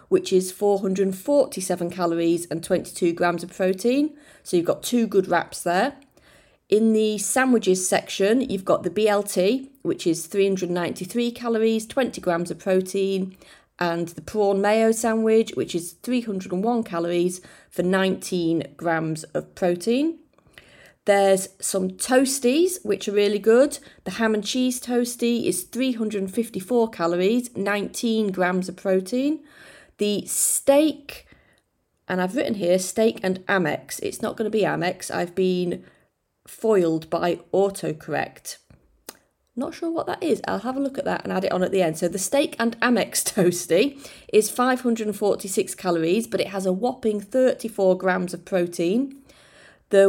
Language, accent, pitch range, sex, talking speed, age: English, British, 180-235 Hz, female, 145 wpm, 30-49